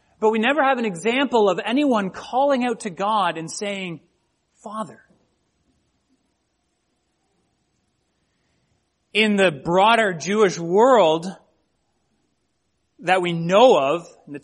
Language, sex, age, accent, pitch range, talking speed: English, male, 30-49, American, 175-230 Hz, 110 wpm